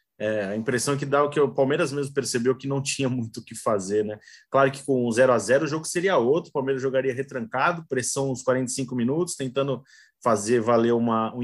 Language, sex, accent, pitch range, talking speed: Portuguese, male, Brazilian, 115-140 Hz, 210 wpm